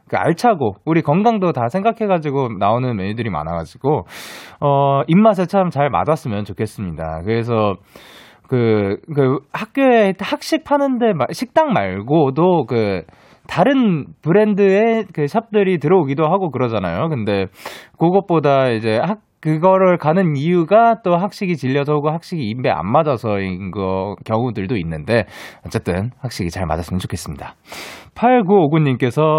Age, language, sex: 20-39, Korean, male